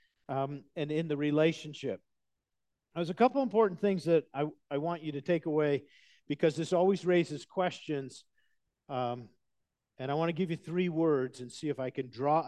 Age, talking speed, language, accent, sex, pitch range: 50-69, 185 wpm, English, American, male, 130-165 Hz